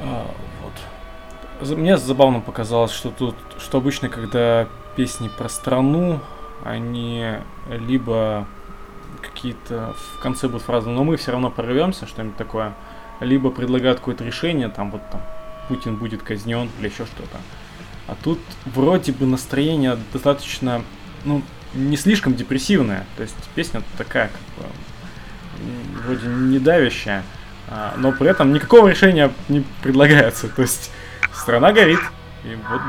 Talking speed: 130 wpm